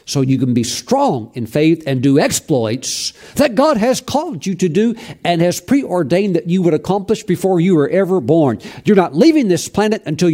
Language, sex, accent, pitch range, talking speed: English, male, American, 130-175 Hz, 205 wpm